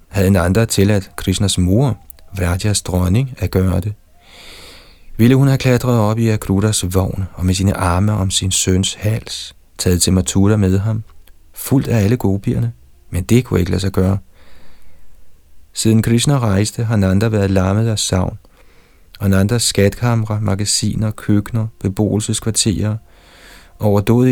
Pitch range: 90-110 Hz